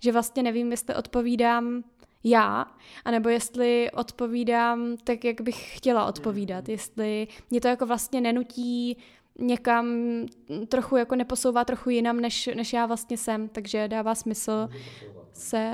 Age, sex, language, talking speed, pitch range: 20-39, female, Czech, 135 wpm, 215-245 Hz